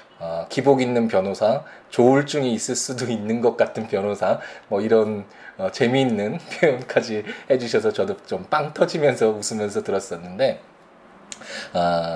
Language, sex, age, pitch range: Korean, male, 20-39, 100-140 Hz